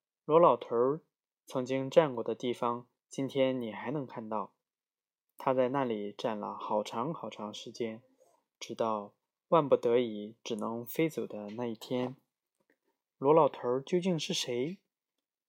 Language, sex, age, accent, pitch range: Chinese, male, 20-39, native, 120-155 Hz